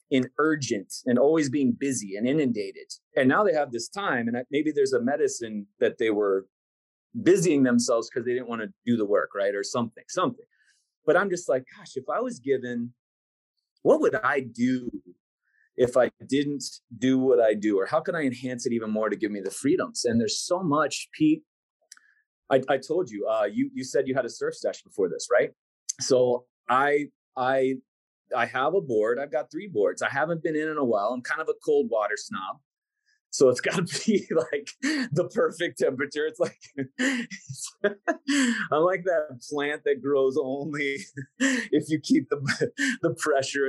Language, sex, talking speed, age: English, male, 190 wpm, 30-49